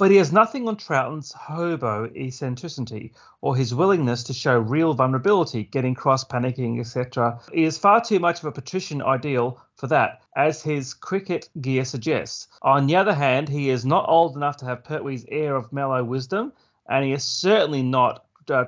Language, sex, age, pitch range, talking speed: English, male, 30-49, 125-160 Hz, 185 wpm